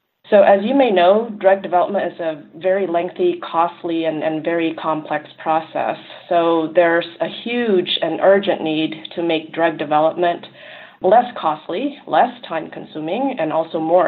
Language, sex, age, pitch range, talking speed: English, female, 30-49, 160-195 Hz, 150 wpm